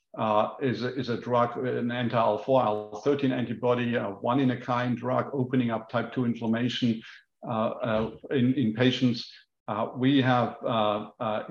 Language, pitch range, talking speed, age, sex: English, 115-135 Hz, 135 wpm, 50-69, male